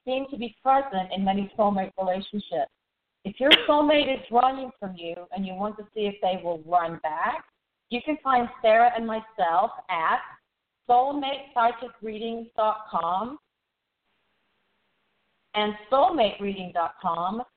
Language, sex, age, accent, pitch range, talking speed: English, female, 40-59, American, 195-235 Hz, 120 wpm